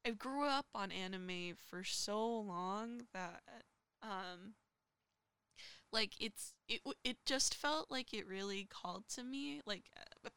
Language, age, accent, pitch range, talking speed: English, 10-29, American, 190-245 Hz, 145 wpm